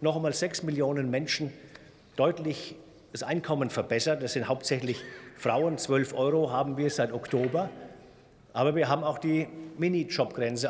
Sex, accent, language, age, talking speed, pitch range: male, German, German, 50-69, 140 wpm, 135-180 Hz